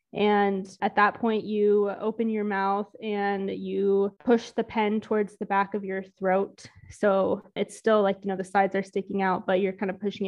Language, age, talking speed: English, 20-39, 205 wpm